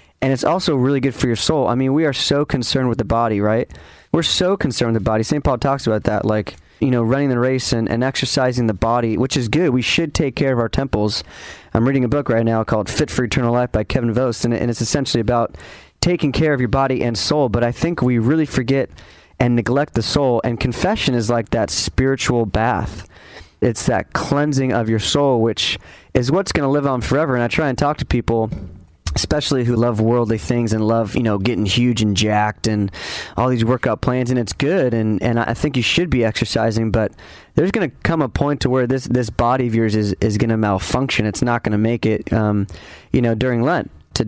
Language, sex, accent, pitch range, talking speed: English, male, American, 110-135 Hz, 235 wpm